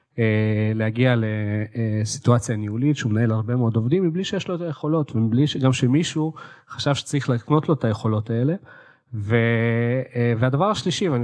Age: 30-49